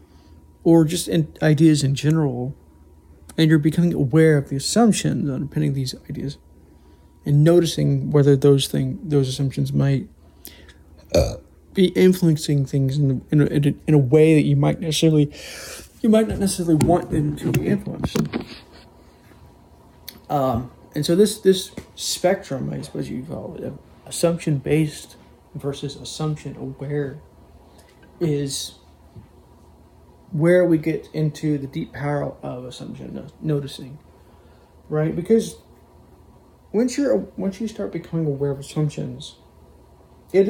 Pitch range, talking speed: 95-160 Hz, 130 wpm